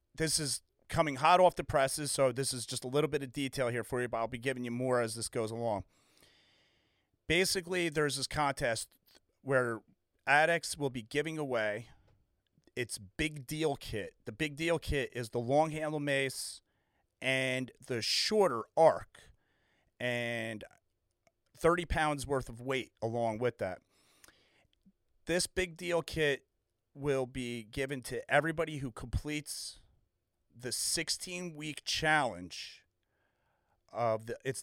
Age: 30-49